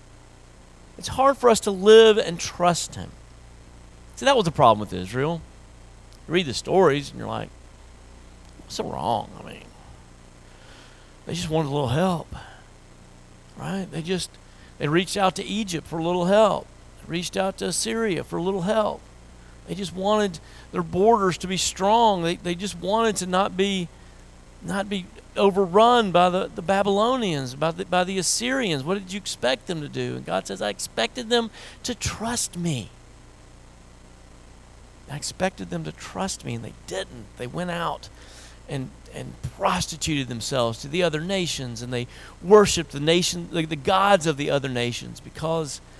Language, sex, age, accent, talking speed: English, male, 40-59, American, 170 wpm